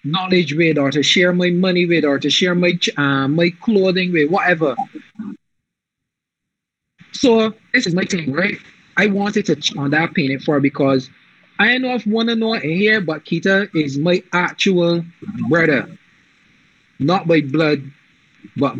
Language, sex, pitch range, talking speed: English, male, 155-205 Hz, 165 wpm